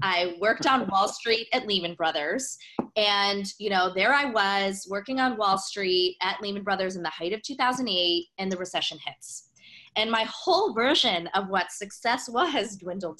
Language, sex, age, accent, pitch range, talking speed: English, female, 20-39, American, 170-230 Hz, 175 wpm